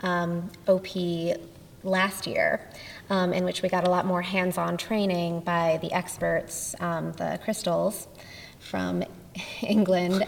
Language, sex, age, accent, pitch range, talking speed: English, female, 20-39, American, 175-195 Hz, 130 wpm